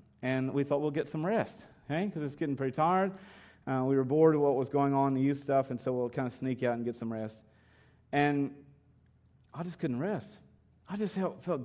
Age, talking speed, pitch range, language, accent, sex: 40-59, 230 wpm, 140-190 Hz, English, American, male